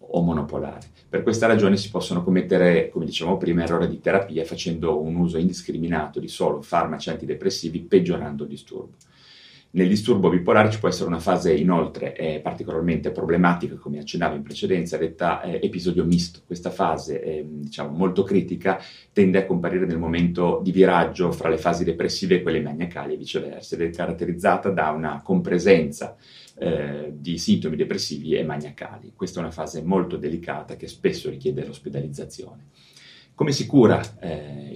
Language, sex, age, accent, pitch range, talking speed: Italian, male, 30-49, native, 80-100 Hz, 160 wpm